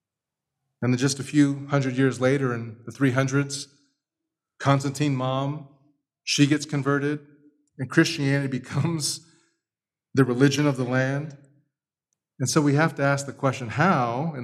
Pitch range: 120-160 Hz